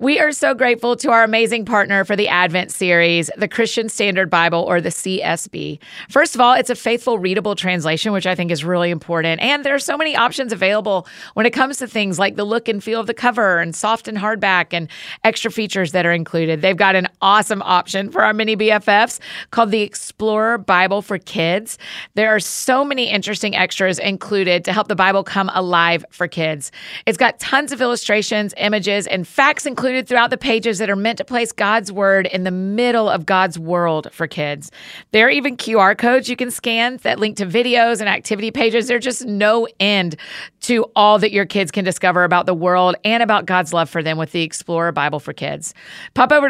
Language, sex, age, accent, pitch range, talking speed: English, female, 30-49, American, 185-235 Hz, 210 wpm